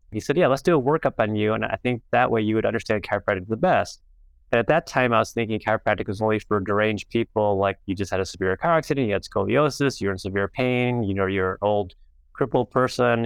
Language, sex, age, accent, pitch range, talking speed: English, male, 30-49, American, 100-120 Hz, 245 wpm